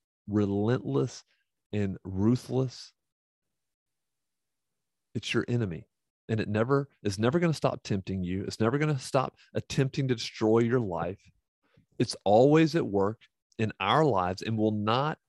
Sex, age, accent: male, 40-59, American